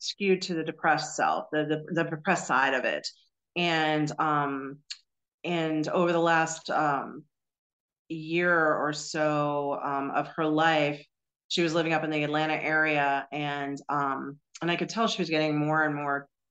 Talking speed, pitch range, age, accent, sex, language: 165 wpm, 140-165 Hz, 40-59, American, female, English